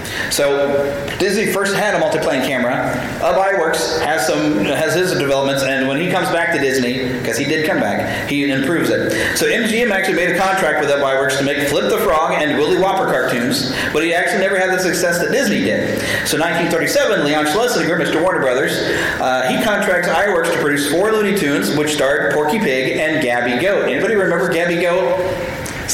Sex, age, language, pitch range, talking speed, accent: male, 30-49, English, 145-200 Hz, 195 wpm, American